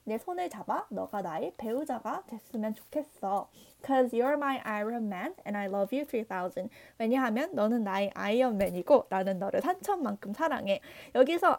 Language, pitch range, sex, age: Korean, 215-310 Hz, female, 20-39